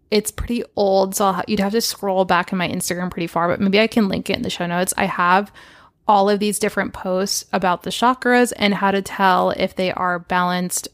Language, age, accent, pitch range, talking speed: English, 20-39, American, 185-215 Hz, 240 wpm